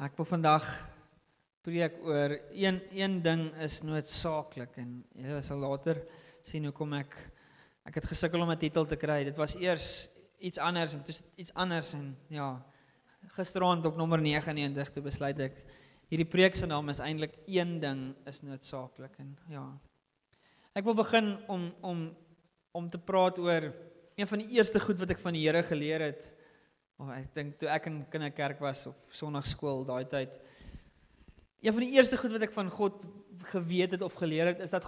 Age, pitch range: 20-39, 150-185 Hz